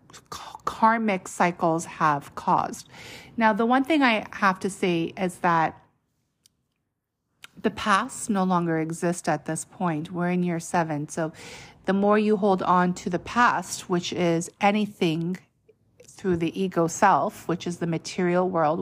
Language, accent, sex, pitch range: English, American, female, 170-200 Hz